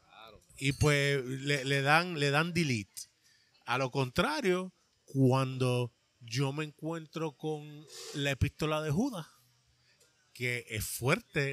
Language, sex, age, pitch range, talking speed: Spanish, male, 30-49, 135-165 Hz, 110 wpm